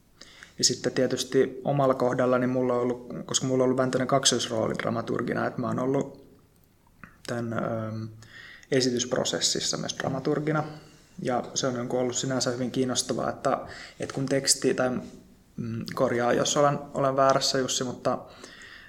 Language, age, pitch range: Finnish, 20-39, 120-135 Hz